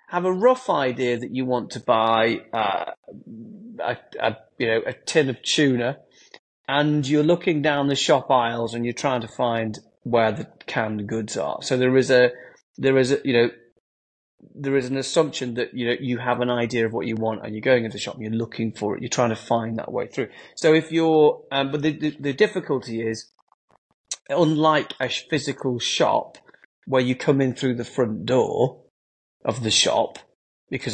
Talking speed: 210 wpm